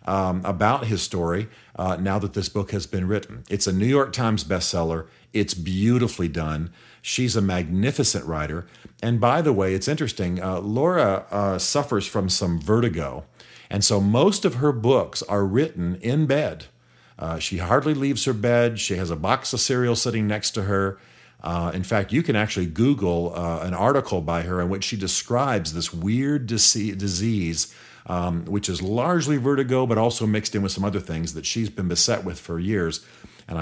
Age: 50-69